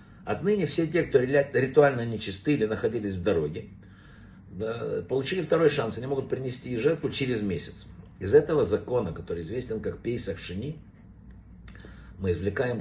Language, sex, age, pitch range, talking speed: Russian, male, 60-79, 100-140 Hz, 130 wpm